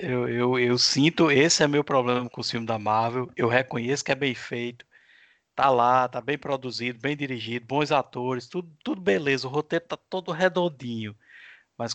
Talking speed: 185 wpm